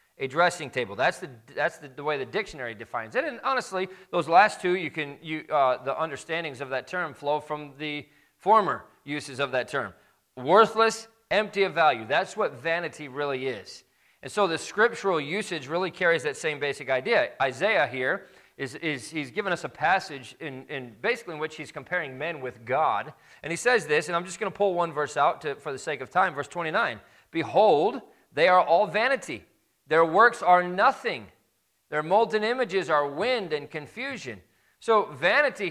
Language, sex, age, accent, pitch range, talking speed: English, male, 40-59, American, 145-200 Hz, 185 wpm